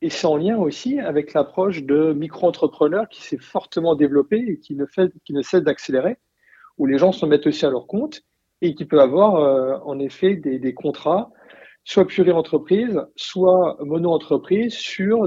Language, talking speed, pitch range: French, 170 wpm, 140-180 Hz